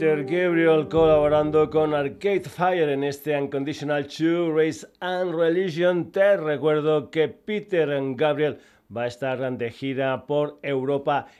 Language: Spanish